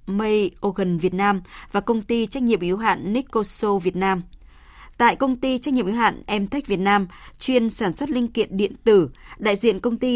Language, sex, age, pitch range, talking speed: Vietnamese, female, 20-39, 190-230 Hz, 205 wpm